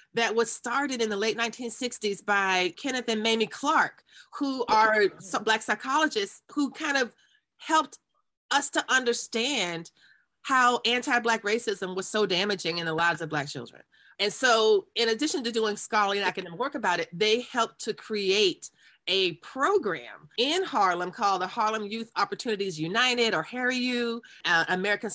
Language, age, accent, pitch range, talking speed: English, 30-49, American, 200-280 Hz, 160 wpm